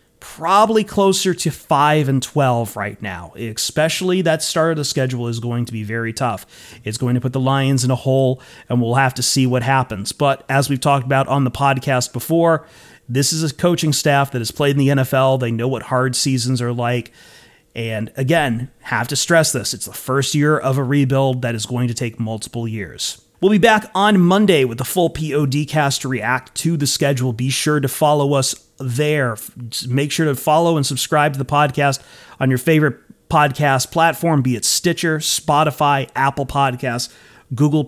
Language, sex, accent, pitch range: English, male, American, 125-155 Hz